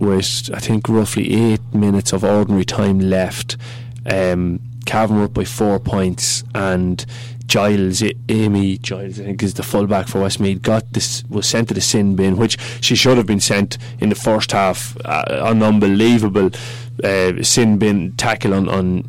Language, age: English, 20-39